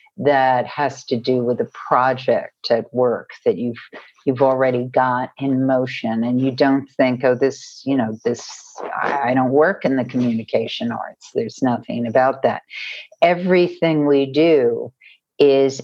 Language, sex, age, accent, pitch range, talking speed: English, female, 50-69, American, 125-155 Hz, 155 wpm